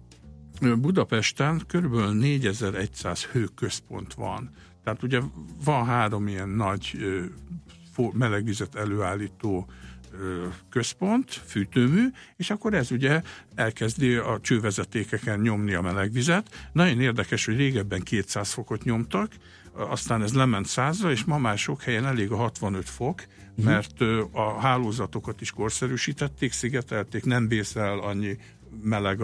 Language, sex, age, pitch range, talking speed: Hungarian, male, 60-79, 100-135 Hz, 115 wpm